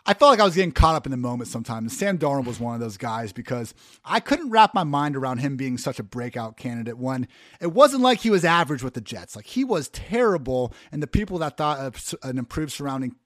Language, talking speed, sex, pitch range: English, 245 wpm, male, 120-155 Hz